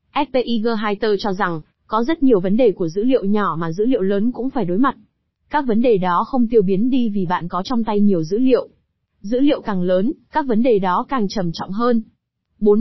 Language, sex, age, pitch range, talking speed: Vietnamese, female, 20-39, 195-250 Hz, 235 wpm